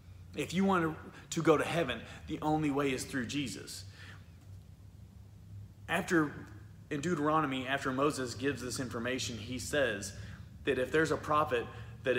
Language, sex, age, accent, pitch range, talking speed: English, male, 30-49, American, 110-145 Hz, 145 wpm